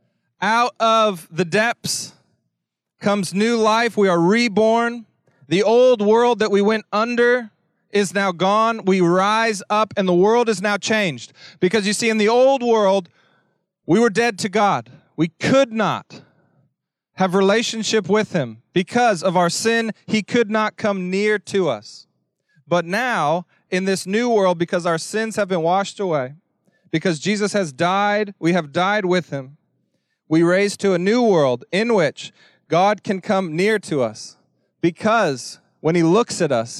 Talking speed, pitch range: 165 wpm, 170-215 Hz